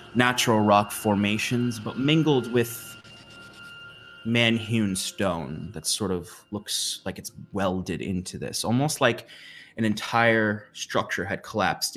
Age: 20-39